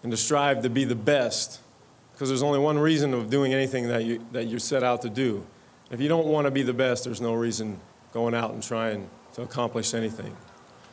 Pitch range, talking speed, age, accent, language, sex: 115-135 Hz, 225 wpm, 40-59, American, English, male